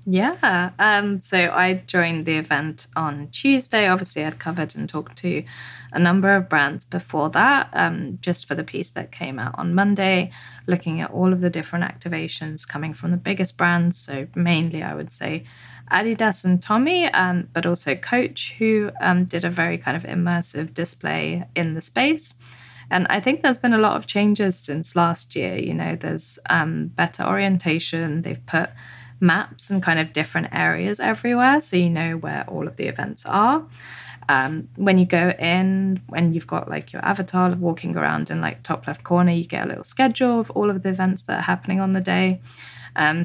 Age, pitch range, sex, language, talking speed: 20-39, 155-190 Hz, female, English, 190 wpm